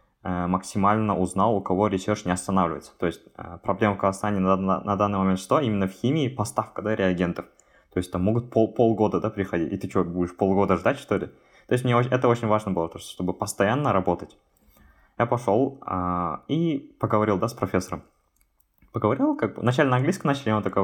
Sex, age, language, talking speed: male, 20-39, Russian, 195 wpm